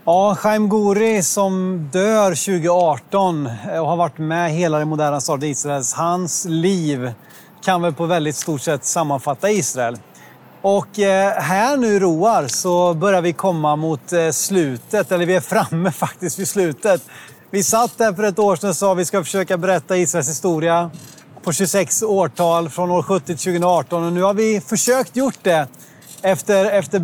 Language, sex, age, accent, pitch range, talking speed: Swedish, male, 30-49, native, 165-195 Hz, 170 wpm